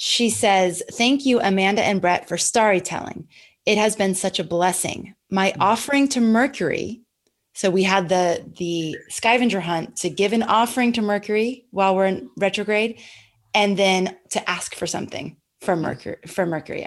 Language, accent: English, American